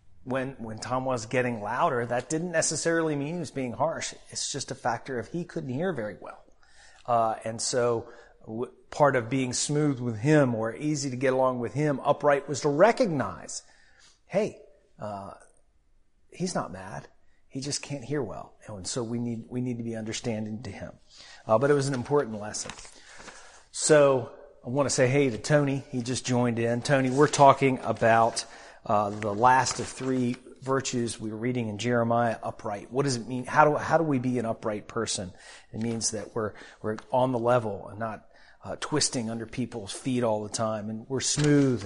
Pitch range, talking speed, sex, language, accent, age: 115-140 Hz, 190 wpm, male, English, American, 40-59